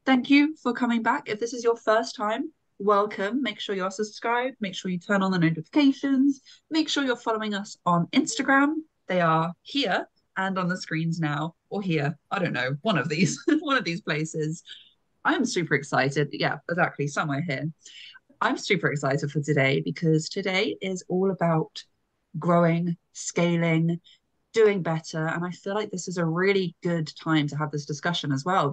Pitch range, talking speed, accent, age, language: 155-205 Hz, 180 wpm, British, 20-39, English